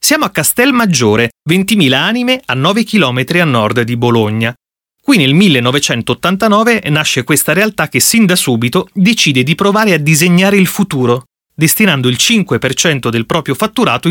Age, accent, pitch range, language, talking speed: 30-49, native, 130-190 Hz, Italian, 155 wpm